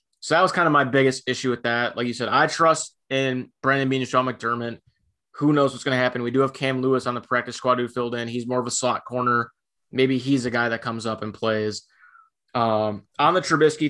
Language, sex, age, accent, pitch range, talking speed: English, male, 20-39, American, 115-135 Hz, 250 wpm